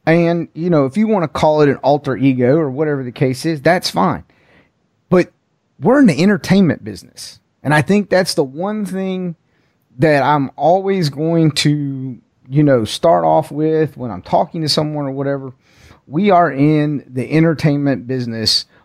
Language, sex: English, male